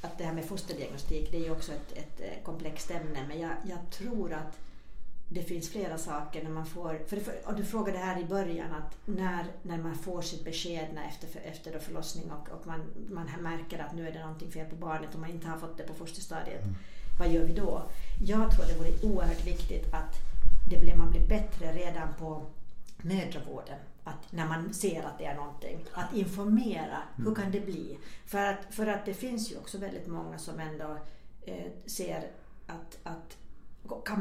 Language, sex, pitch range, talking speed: Swedish, female, 160-200 Hz, 200 wpm